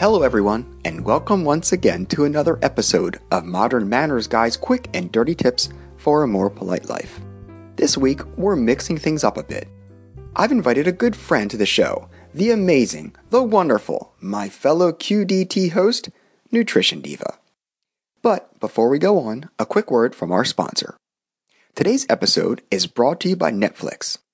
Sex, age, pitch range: male, 30-49, 115-190 Hz